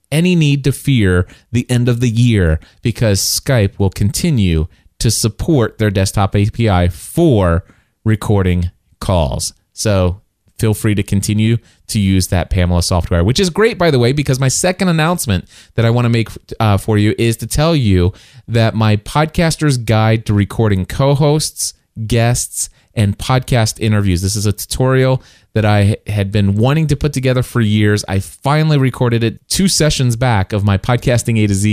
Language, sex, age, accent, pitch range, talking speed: English, male, 30-49, American, 100-125 Hz, 170 wpm